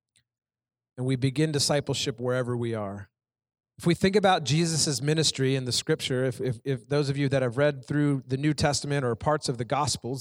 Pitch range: 125-160 Hz